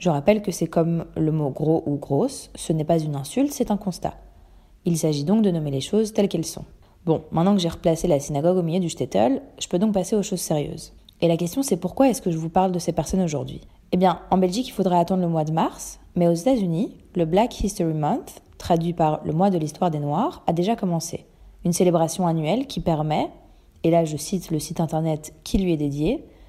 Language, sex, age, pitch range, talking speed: French, female, 20-39, 155-195 Hz, 240 wpm